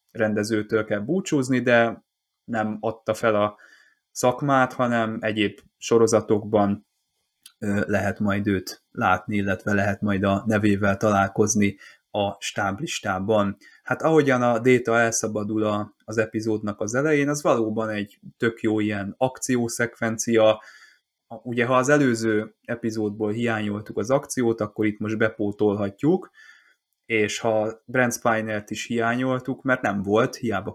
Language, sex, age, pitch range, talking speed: Hungarian, male, 20-39, 105-115 Hz, 120 wpm